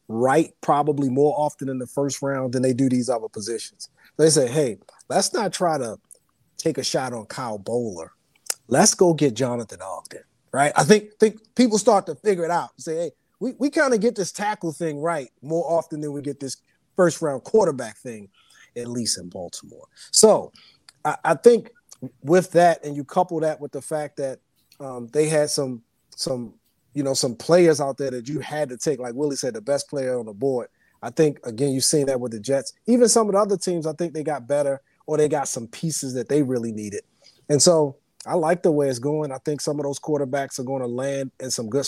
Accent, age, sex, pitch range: American, 30-49, male, 130-160 Hz